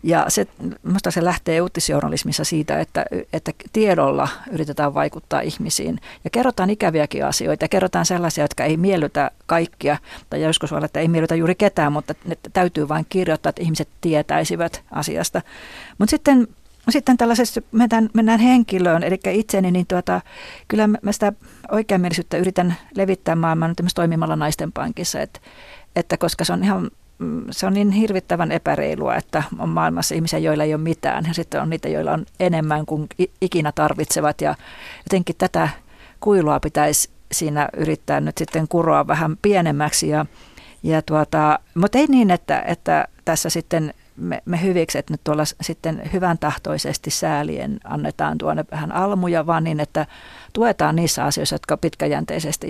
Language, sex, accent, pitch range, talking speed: Finnish, female, native, 155-190 Hz, 155 wpm